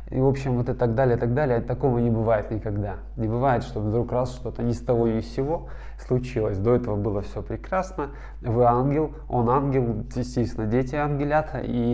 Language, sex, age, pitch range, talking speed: Russian, male, 20-39, 105-125 Hz, 200 wpm